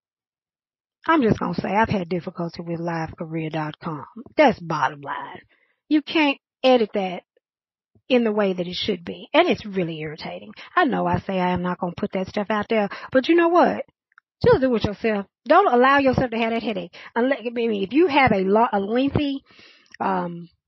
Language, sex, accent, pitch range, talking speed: English, female, American, 205-275 Hz, 185 wpm